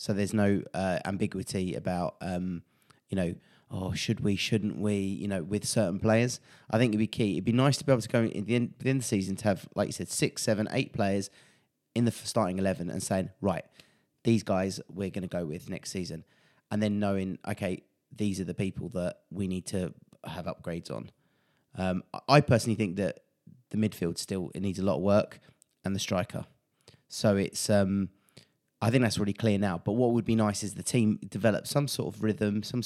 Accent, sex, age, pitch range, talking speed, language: British, male, 30-49, 95-120 Hz, 215 wpm, English